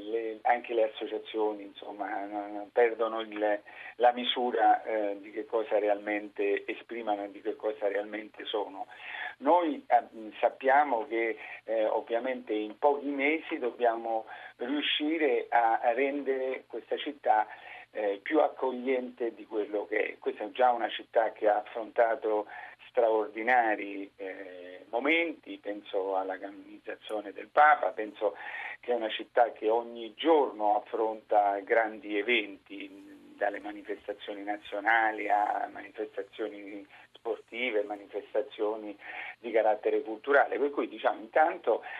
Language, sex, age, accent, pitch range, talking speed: Italian, male, 50-69, native, 105-150 Hz, 115 wpm